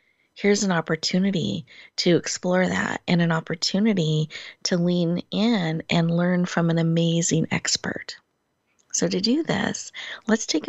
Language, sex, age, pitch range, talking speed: English, female, 30-49, 165-210 Hz, 135 wpm